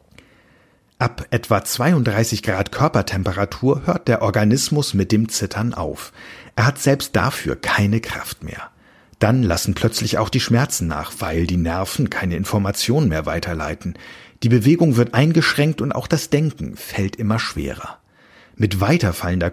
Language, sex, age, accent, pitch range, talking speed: German, male, 50-69, German, 95-130 Hz, 140 wpm